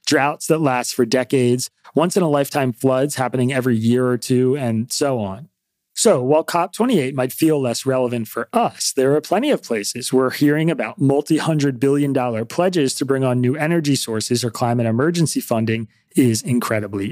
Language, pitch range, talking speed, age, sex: English, 120-150 Hz, 160 wpm, 30-49, male